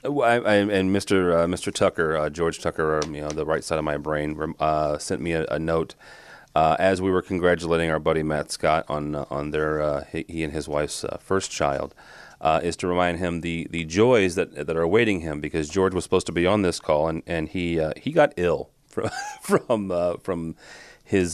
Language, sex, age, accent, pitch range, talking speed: English, male, 30-49, American, 75-95 Hz, 230 wpm